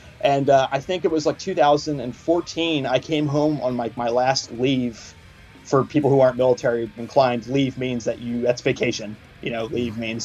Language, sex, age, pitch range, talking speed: English, male, 20-39, 115-140 Hz, 185 wpm